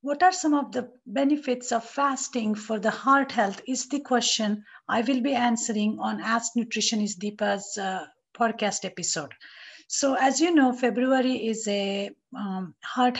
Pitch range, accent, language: 205-260 Hz, Indian, English